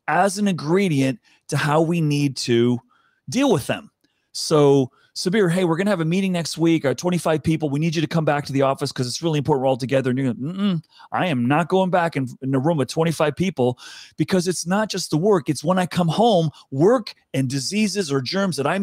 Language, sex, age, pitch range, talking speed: English, male, 30-49, 130-170 Hz, 235 wpm